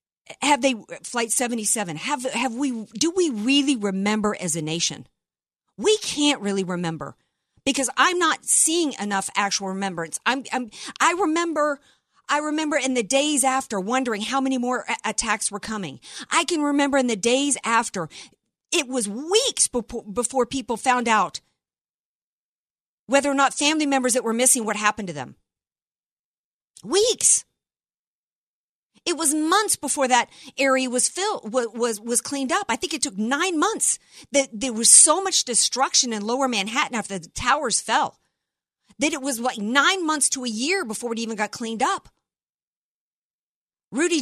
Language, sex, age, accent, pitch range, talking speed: English, female, 50-69, American, 215-285 Hz, 160 wpm